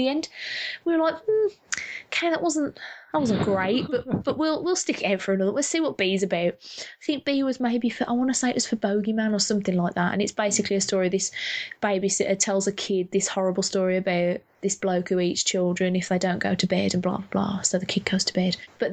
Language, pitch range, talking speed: English, 195-250 Hz, 255 wpm